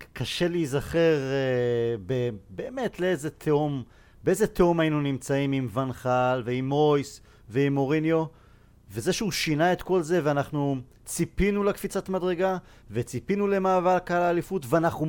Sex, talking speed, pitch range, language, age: male, 125 wpm, 125-175 Hz, Hebrew, 40-59